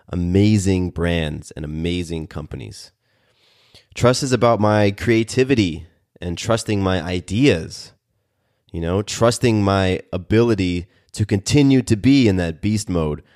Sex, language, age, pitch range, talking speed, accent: male, English, 30-49, 90-115 Hz, 120 wpm, American